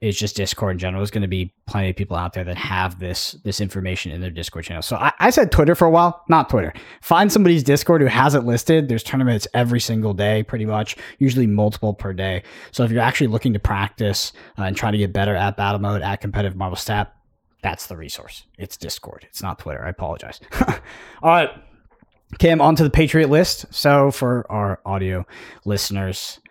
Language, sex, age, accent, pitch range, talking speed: English, male, 20-39, American, 95-135 Hz, 210 wpm